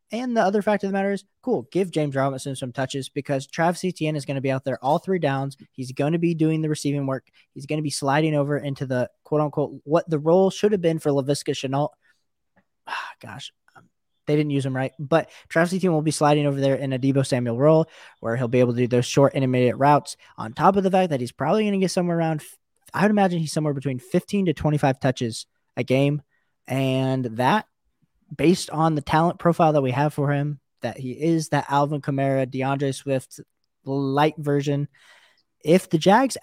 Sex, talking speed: male, 215 wpm